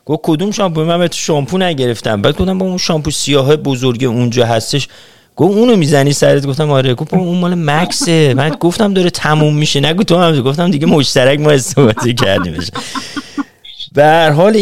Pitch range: 90-140 Hz